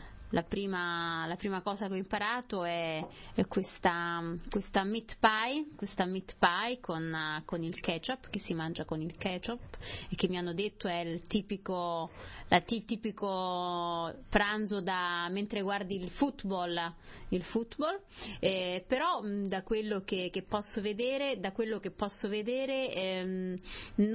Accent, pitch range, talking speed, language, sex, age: native, 175-215 Hz, 150 wpm, Italian, female, 30-49